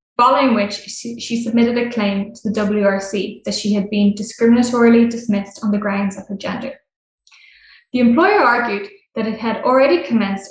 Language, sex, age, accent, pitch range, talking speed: English, female, 10-29, Irish, 205-250 Hz, 170 wpm